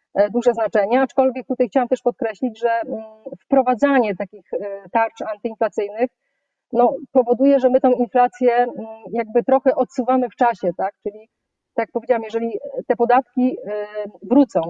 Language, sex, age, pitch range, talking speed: Polish, female, 30-49, 215-255 Hz, 125 wpm